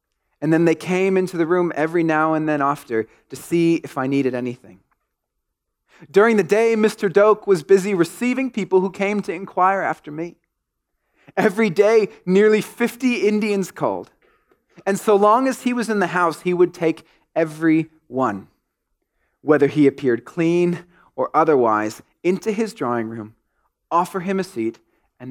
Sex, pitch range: male, 135-195 Hz